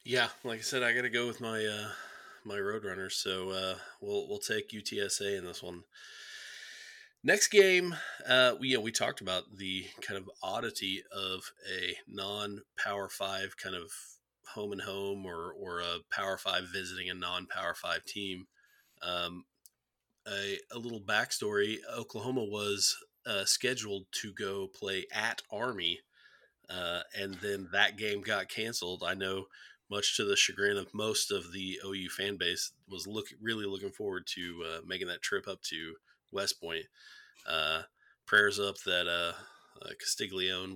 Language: English